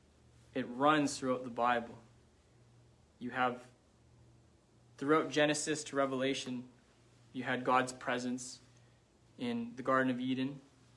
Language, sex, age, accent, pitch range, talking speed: English, male, 20-39, American, 115-135 Hz, 110 wpm